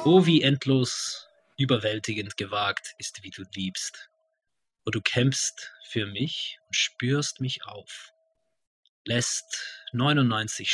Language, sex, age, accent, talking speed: English, male, 20-39, German, 110 wpm